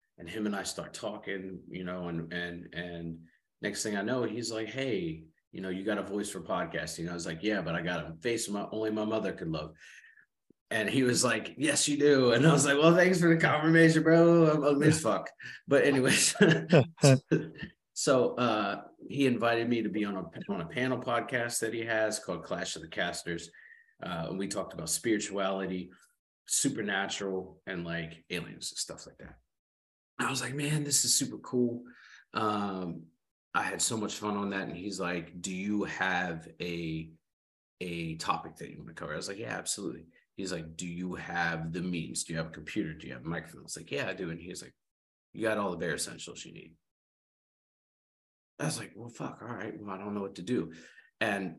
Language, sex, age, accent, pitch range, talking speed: English, male, 30-49, American, 85-120 Hz, 210 wpm